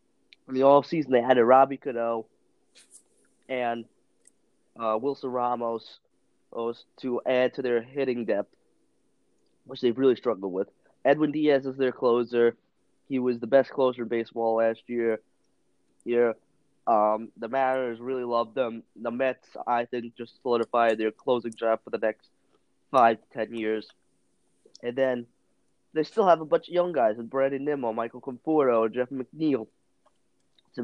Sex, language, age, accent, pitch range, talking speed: male, English, 20-39, American, 115-135 Hz, 155 wpm